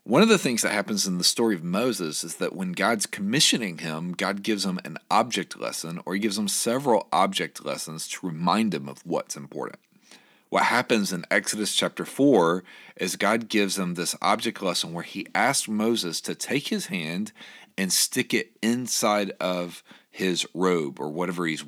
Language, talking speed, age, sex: English, 185 wpm, 40-59, male